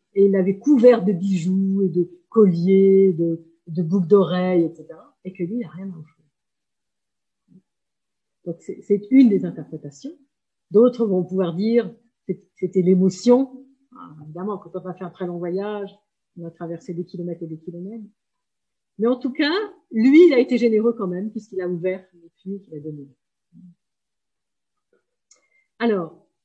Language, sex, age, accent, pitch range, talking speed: French, female, 50-69, French, 180-235 Hz, 160 wpm